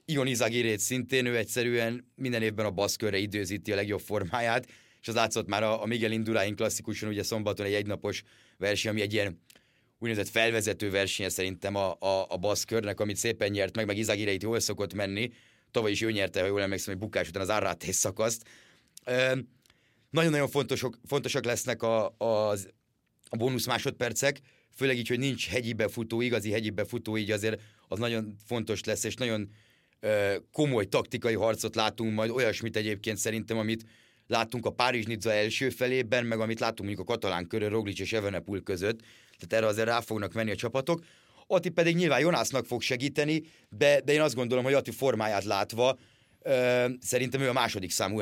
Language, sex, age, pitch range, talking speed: Hungarian, male, 30-49, 105-125 Hz, 175 wpm